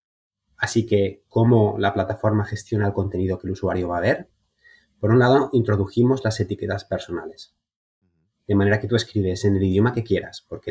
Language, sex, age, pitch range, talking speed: Spanish, male, 30-49, 95-120 Hz, 180 wpm